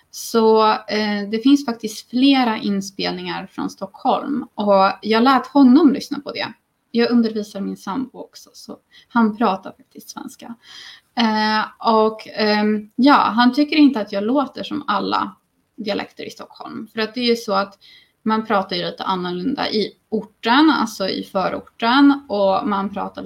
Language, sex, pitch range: Swedish, female, 200-255 Hz